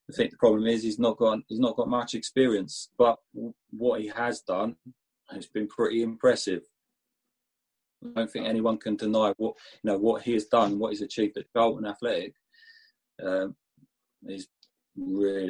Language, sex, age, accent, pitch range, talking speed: English, male, 30-49, British, 100-135 Hz, 170 wpm